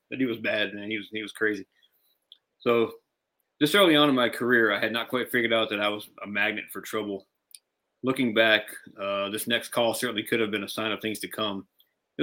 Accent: American